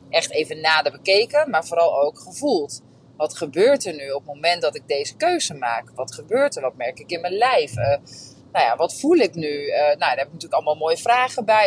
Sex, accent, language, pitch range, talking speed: female, Dutch, Dutch, 145-195 Hz, 235 wpm